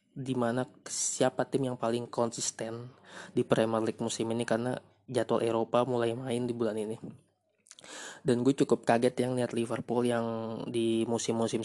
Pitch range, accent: 115-130 Hz, native